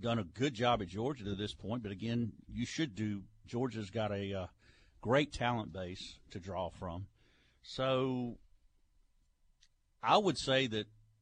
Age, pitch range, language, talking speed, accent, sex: 50-69, 100-130 Hz, English, 155 wpm, American, male